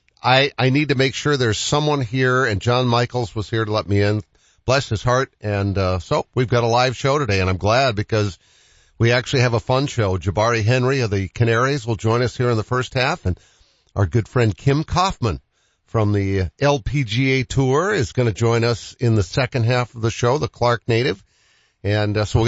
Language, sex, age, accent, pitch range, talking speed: English, male, 50-69, American, 100-130 Hz, 220 wpm